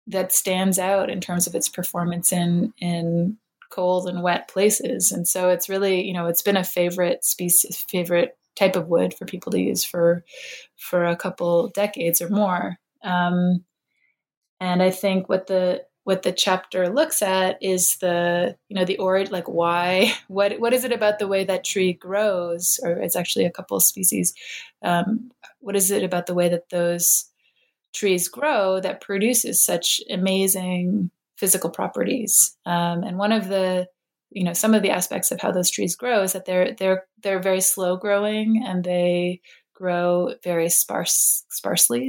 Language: English